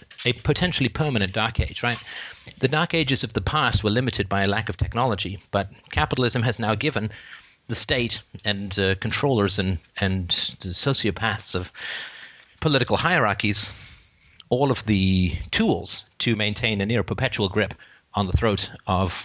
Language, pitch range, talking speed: English, 95-115 Hz, 155 wpm